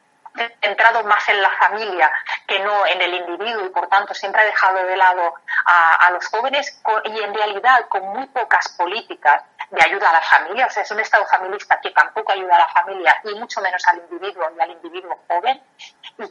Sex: female